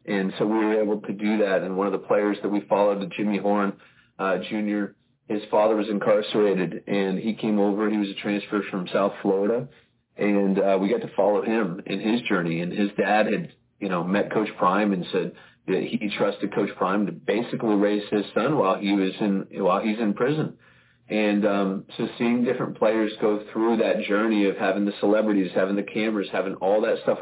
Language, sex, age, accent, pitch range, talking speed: English, male, 30-49, American, 100-110 Hz, 210 wpm